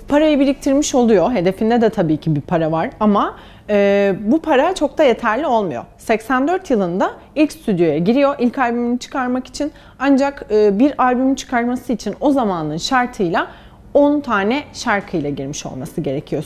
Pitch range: 185-260 Hz